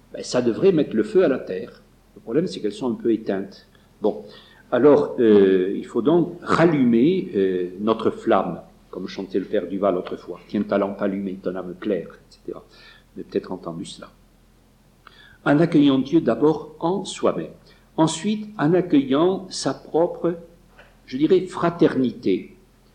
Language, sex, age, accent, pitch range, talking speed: French, male, 50-69, French, 105-165 Hz, 155 wpm